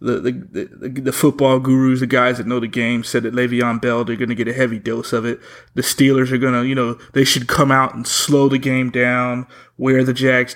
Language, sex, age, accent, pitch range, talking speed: English, male, 30-49, American, 125-155 Hz, 250 wpm